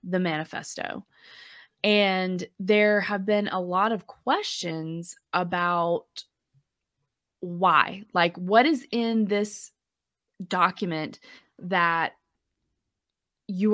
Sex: female